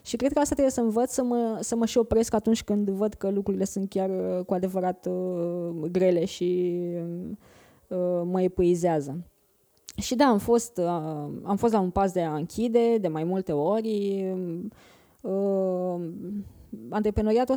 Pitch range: 185-235 Hz